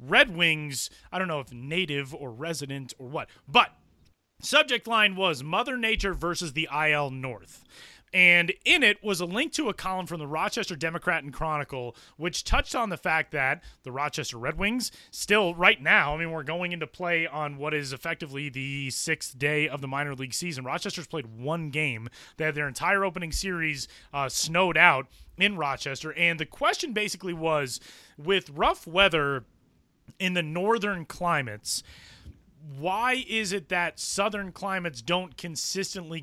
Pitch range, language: 145-180 Hz, English